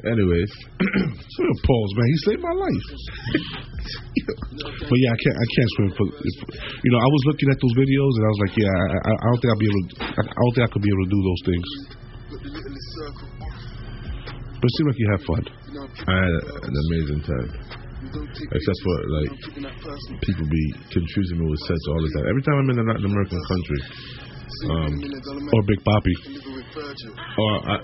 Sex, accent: male, American